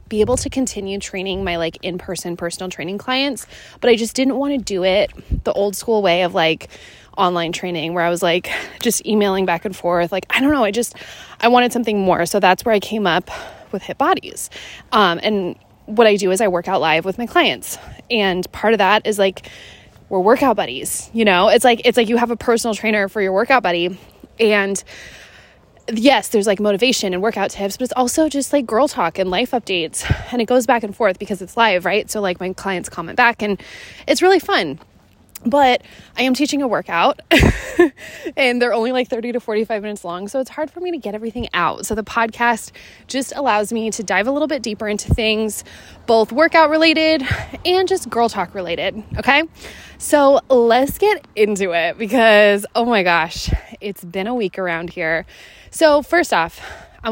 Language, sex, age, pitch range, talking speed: English, female, 20-39, 190-250 Hz, 205 wpm